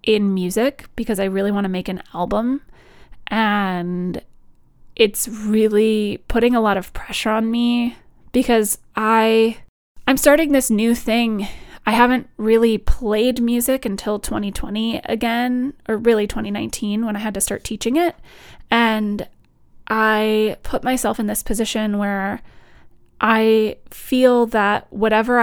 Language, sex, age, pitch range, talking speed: English, female, 20-39, 205-235 Hz, 135 wpm